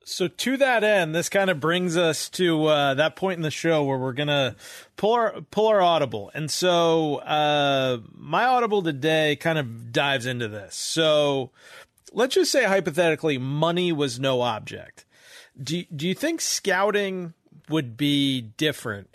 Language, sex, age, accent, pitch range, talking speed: English, male, 40-59, American, 130-165 Hz, 165 wpm